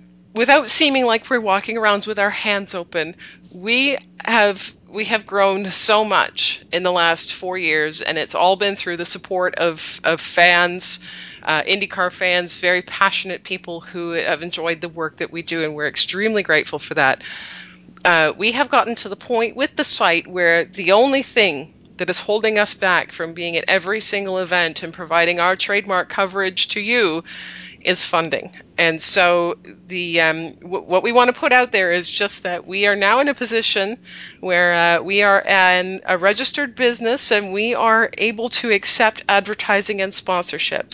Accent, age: American, 30-49